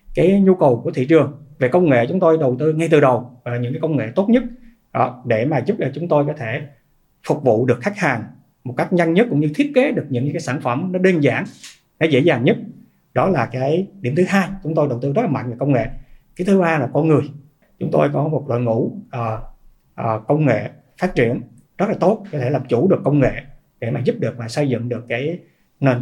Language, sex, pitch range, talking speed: Vietnamese, male, 125-165 Hz, 255 wpm